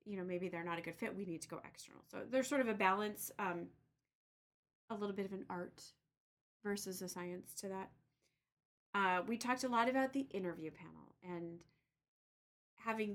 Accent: American